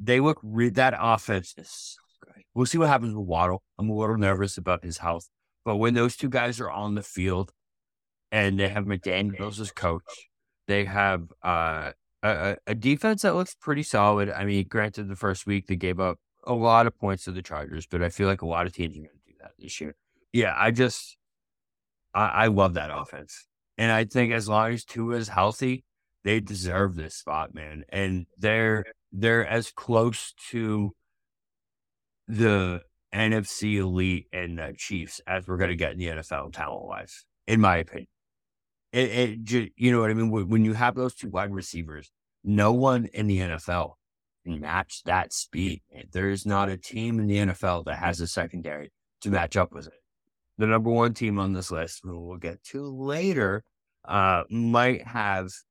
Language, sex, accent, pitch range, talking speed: English, male, American, 90-115 Hz, 190 wpm